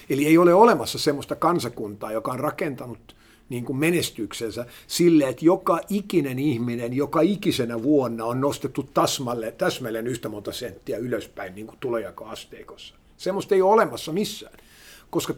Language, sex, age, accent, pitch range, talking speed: Finnish, male, 50-69, native, 135-175 Hz, 135 wpm